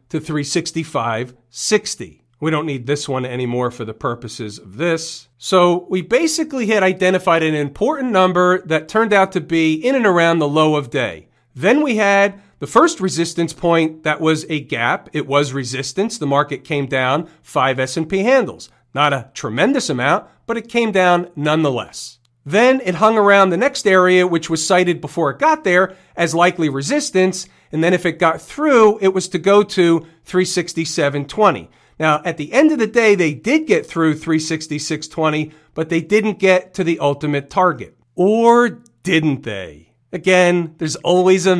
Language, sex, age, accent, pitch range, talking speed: English, male, 40-59, American, 145-190 Hz, 175 wpm